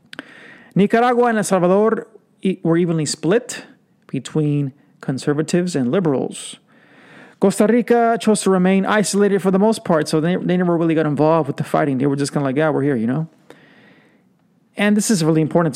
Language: English